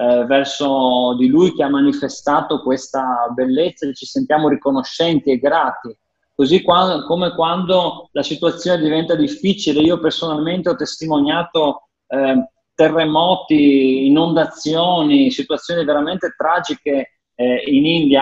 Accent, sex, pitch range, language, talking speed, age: Italian, male, 140-175 Hz, English, 110 wpm, 30-49